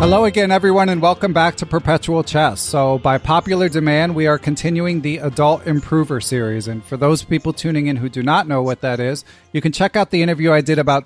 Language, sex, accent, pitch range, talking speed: English, male, American, 140-170 Hz, 230 wpm